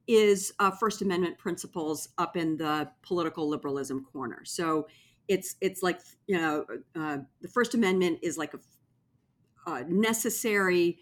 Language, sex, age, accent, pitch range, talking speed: English, female, 50-69, American, 160-215 Hz, 140 wpm